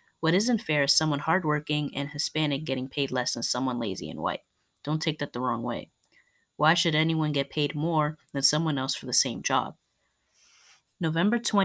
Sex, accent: female, American